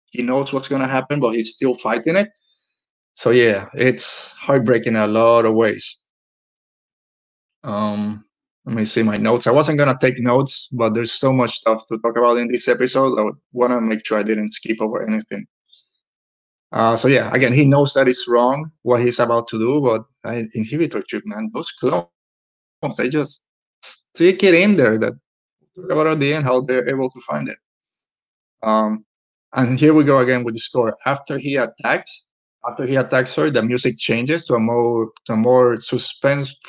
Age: 20-39